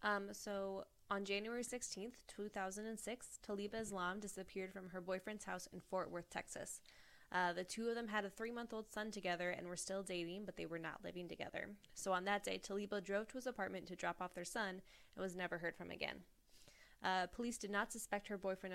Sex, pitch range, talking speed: female, 185-210 Hz, 205 wpm